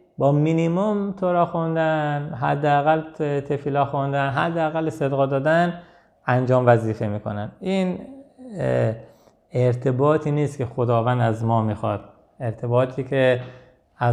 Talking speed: 100 wpm